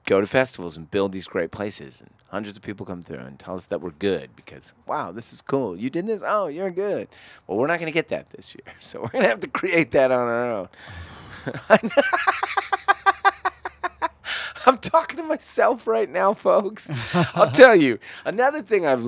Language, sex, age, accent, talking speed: English, male, 30-49, American, 200 wpm